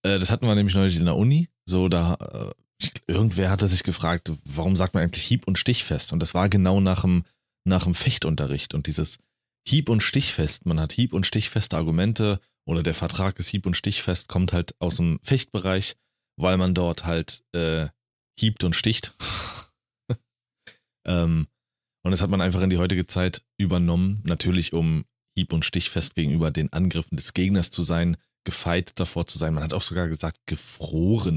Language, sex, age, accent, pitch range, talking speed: German, male, 30-49, German, 80-100 Hz, 180 wpm